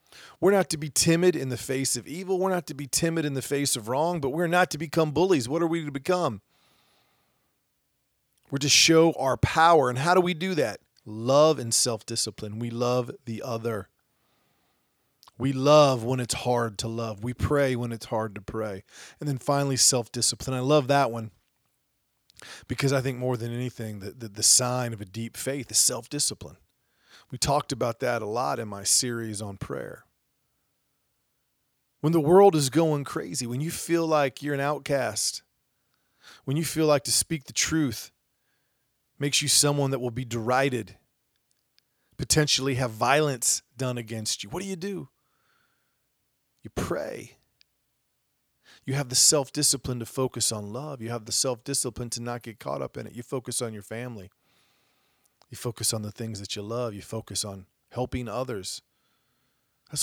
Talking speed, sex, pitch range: 175 wpm, male, 115-145 Hz